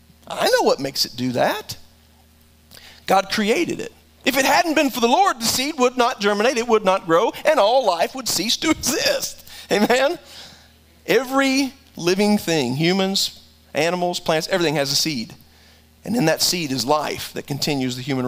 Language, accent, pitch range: English, American, 115-190 Hz